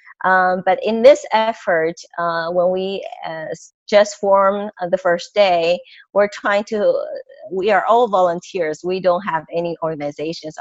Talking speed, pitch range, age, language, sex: 155 wpm, 170-200 Hz, 30-49, English, female